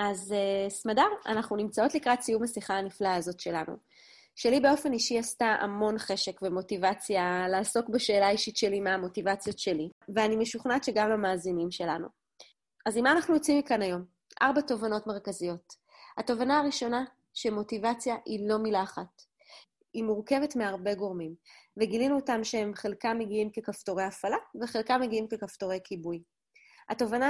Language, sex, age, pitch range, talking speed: Hebrew, female, 30-49, 200-245 Hz, 135 wpm